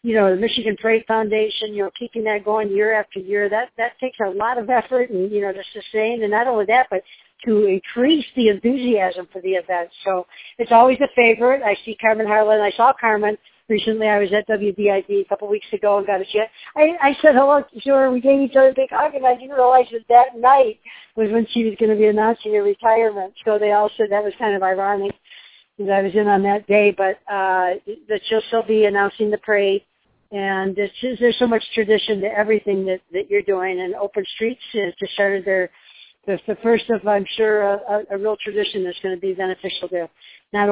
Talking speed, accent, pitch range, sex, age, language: 230 wpm, American, 195-235 Hz, female, 50-69, English